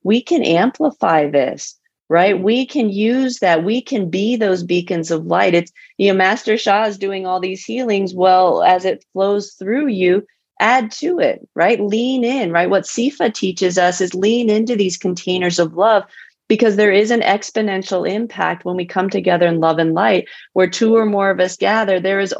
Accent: American